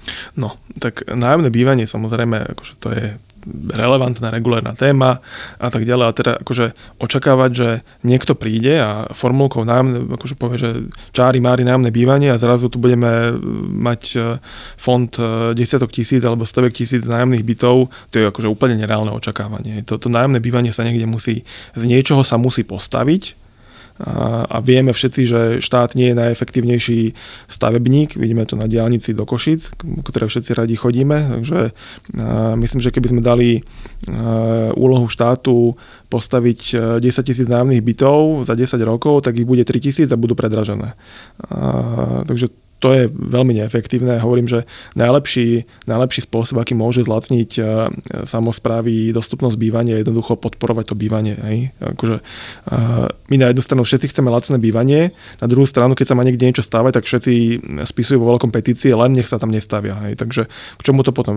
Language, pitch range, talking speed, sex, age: Slovak, 115-125 Hz, 160 wpm, male, 20-39